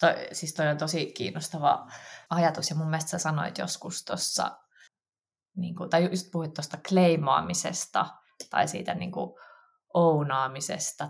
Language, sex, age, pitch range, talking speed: Finnish, female, 20-39, 150-190 Hz, 120 wpm